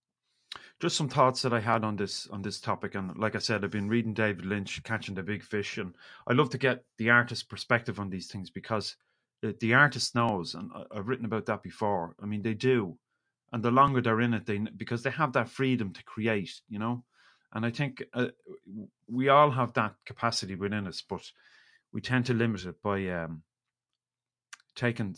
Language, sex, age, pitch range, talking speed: English, male, 30-49, 100-120 Hz, 205 wpm